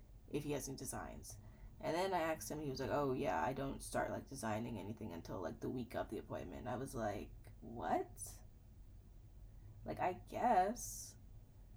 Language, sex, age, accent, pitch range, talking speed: English, female, 20-39, American, 105-150 Hz, 180 wpm